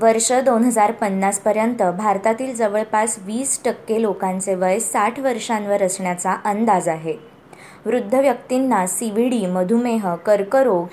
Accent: native